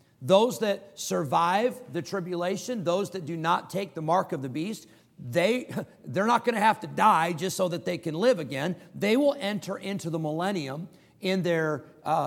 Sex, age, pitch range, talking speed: male, 50-69, 155-195 Hz, 190 wpm